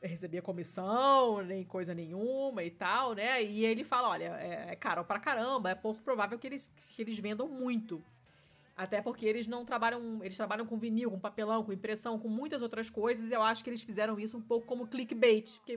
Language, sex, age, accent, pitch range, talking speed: Portuguese, female, 20-39, Brazilian, 185-240 Hz, 205 wpm